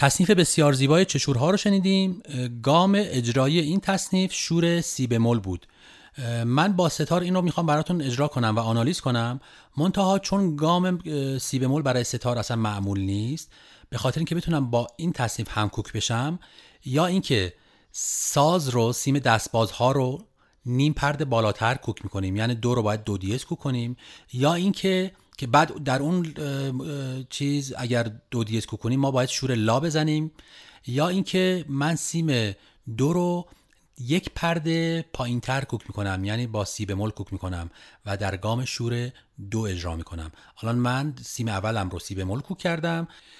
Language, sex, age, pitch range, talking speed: Persian, male, 30-49, 110-155 Hz, 165 wpm